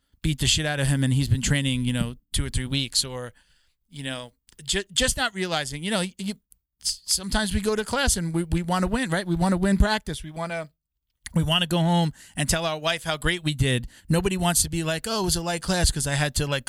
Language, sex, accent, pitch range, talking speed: English, male, American, 130-165 Hz, 275 wpm